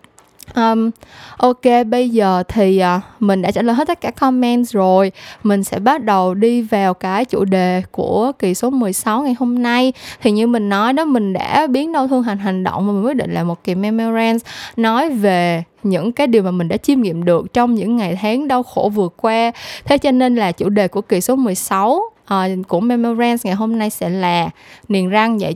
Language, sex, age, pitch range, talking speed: Vietnamese, female, 10-29, 185-245 Hz, 215 wpm